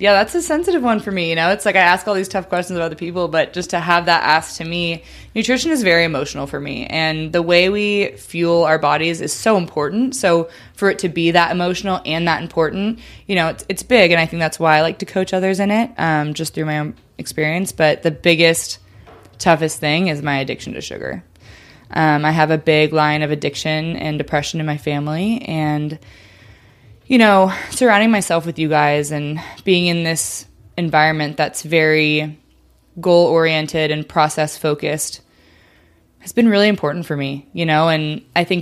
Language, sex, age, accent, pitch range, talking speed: English, female, 20-39, American, 150-175 Hz, 200 wpm